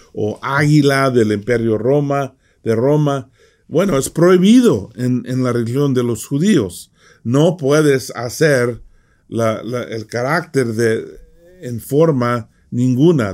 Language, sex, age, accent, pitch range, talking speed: English, male, 50-69, Mexican, 115-150 Hz, 125 wpm